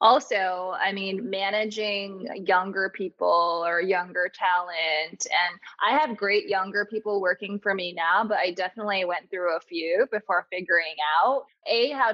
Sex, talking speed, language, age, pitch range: female, 155 wpm, English, 20-39, 185-255 Hz